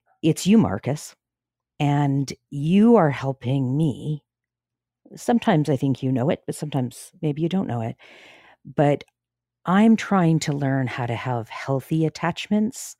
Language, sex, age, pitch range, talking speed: English, female, 50-69, 125-165 Hz, 145 wpm